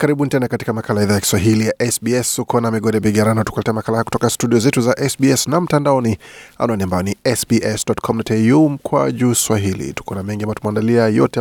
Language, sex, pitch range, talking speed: Swahili, male, 100-120 Hz, 175 wpm